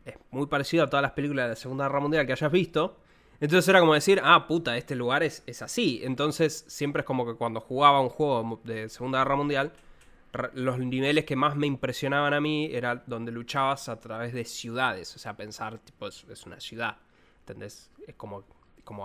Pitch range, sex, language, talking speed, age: 120-150 Hz, male, Spanish, 210 wpm, 20-39